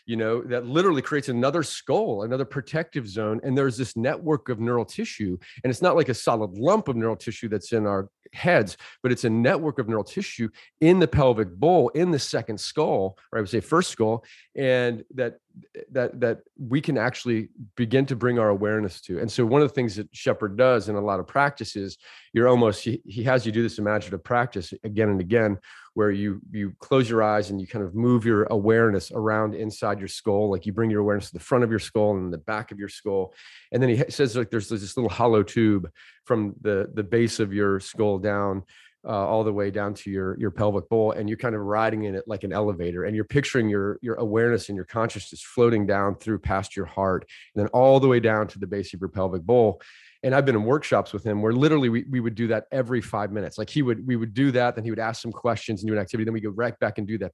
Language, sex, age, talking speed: English, male, 30-49, 245 wpm